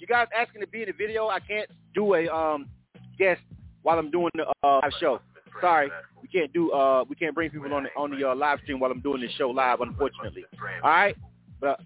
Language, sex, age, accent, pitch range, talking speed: English, male, 30-49, American, 150-200 Hz, 240 wpm